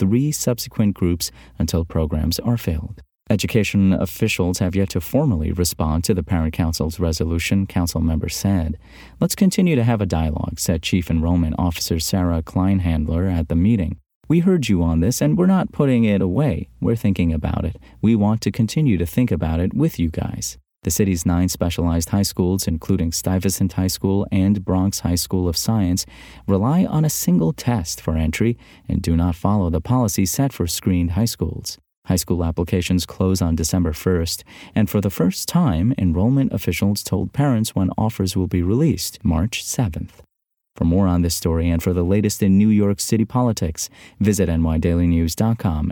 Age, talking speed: 30-49, 180 wpm